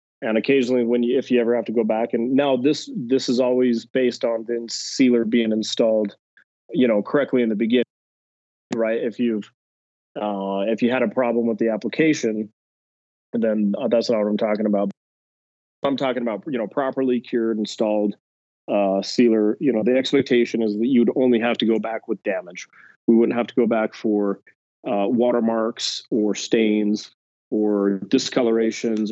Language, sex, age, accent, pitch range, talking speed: English, male, 30-49, American, 105-120 Hz, 175 wpm